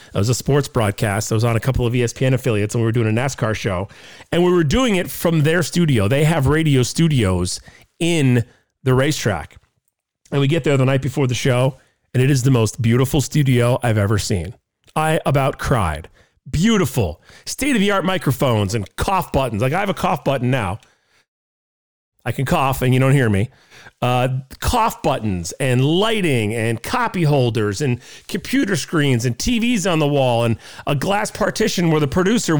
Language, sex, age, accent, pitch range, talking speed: English, male, 40-59, American, 110-150 Hz, 190 wpm